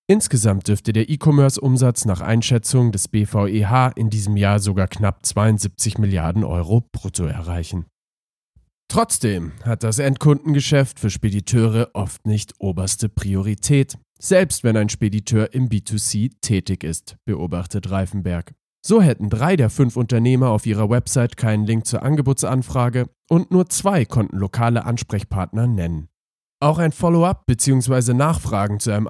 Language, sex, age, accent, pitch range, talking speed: German, male, 40-59, German, 100-125 Hz, 135 wpm